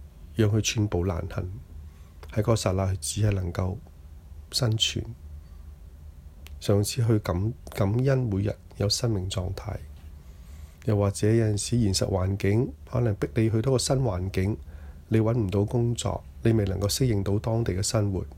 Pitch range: 75-110 Hz